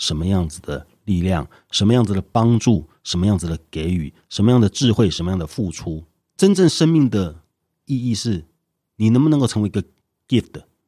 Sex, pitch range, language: male, 85-120 Hz, Chinese